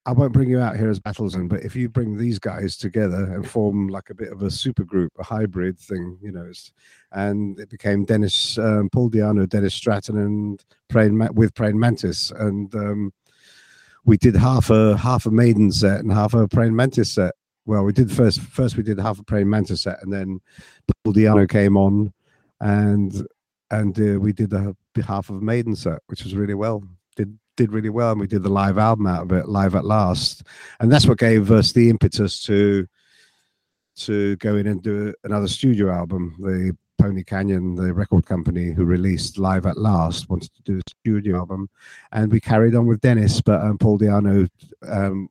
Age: 50-69